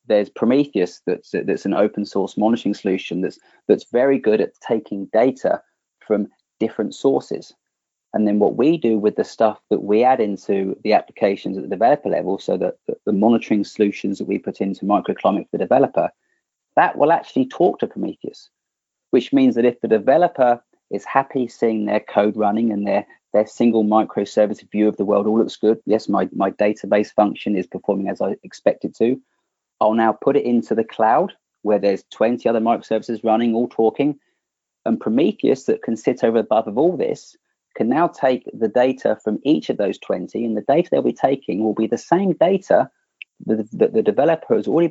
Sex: male